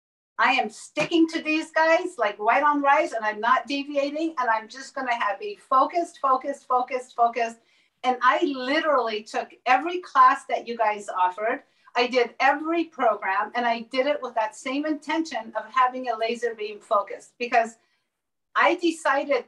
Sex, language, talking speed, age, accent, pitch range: female, English, 175 wpm, 50-69, American, 230-300 Hz